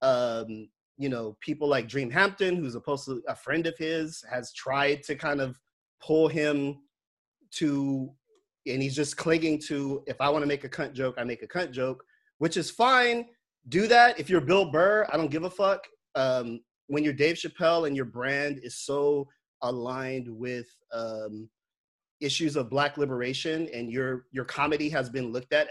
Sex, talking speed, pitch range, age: male, 185 wpm, 125-165 Hz, 30-49